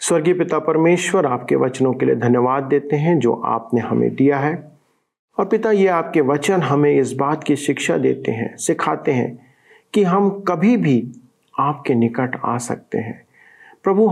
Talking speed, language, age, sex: 165 wpm, Hindi, 40-59, male